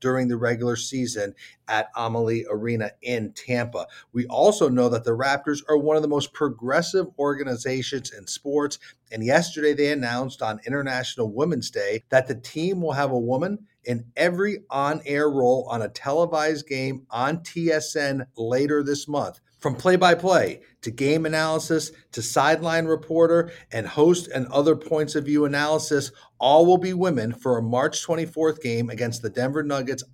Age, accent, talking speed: 40-59, American, 160 wpm